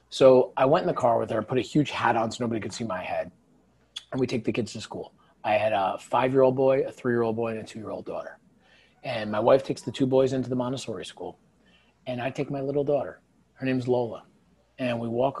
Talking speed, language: 240 wpm, English